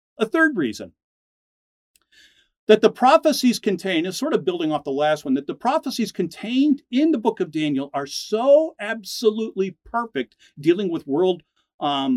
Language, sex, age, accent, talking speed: English, male, 50-69, American, 160 wpm